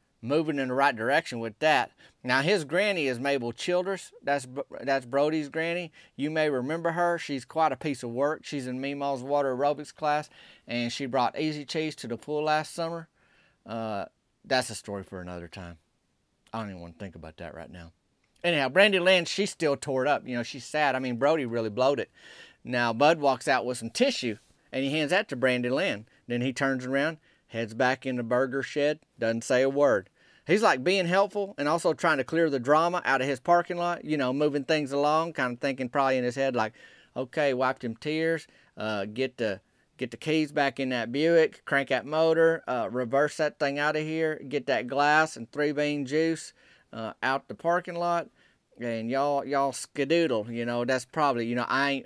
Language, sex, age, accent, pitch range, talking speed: English, male, 30-49, American, 125-155 Hz, 210 wpm